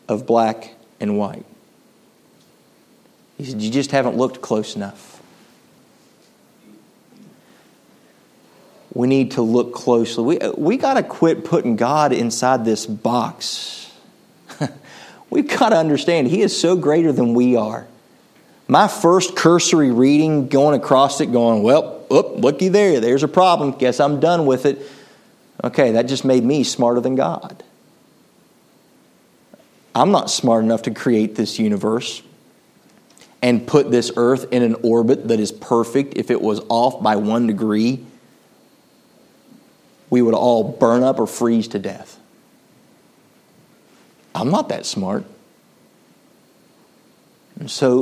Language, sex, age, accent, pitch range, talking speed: English, male, 40-59, American, 115-140 Hz, 130 wpm